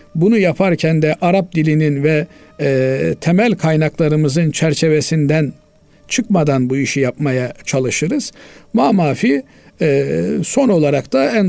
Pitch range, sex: 145-205 Hz, male